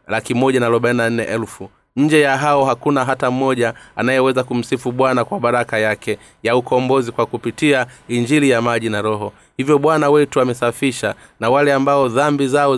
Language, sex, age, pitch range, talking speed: Swahili, male, 30-49, 115-135 Hz, 165 wpm